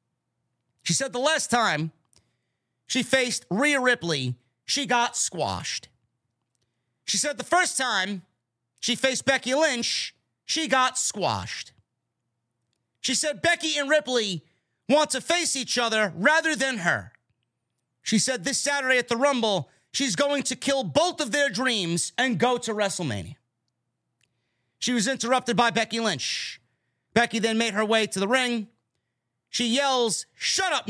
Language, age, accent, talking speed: English, 30-49, American, 145 wpm